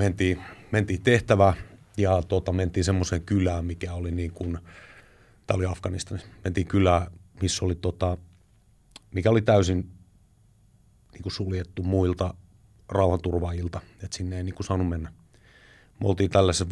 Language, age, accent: Finnish, 30-49, native